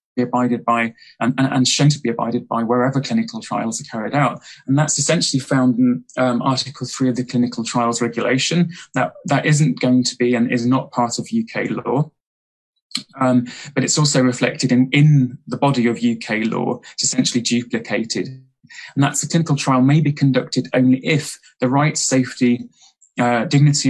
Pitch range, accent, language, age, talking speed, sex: 120-140 Hz, British, English, 20-39, 180 wpm, male